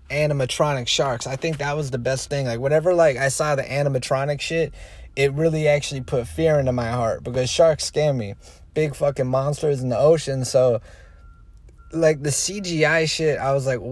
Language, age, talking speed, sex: English, 20-39, 185 wpm, male